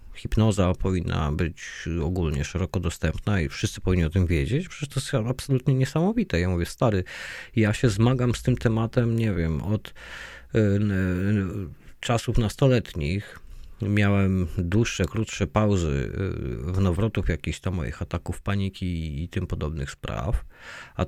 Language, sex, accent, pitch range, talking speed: Polish, male, native, 85-115 Hz, 135 wpm